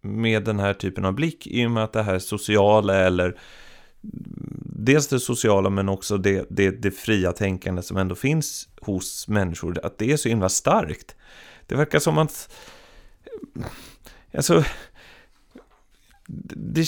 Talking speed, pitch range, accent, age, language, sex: 145 wpm, 95-145 Hz, native, 30-49, Swedish, male